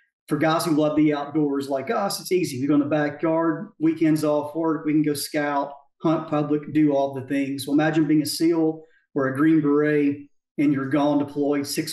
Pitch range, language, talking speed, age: 145-160 Hz, English, 210 wpm, 40-59